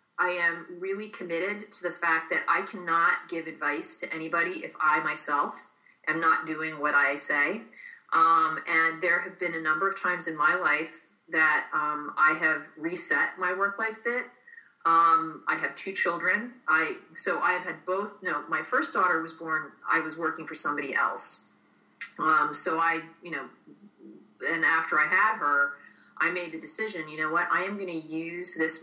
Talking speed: 185 wpm